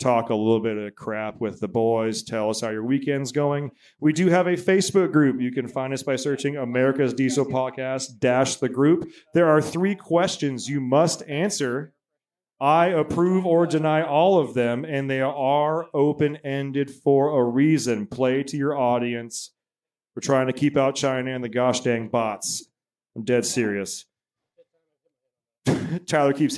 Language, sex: English, male